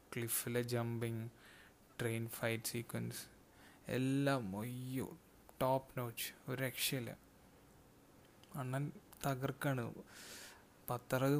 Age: 20-39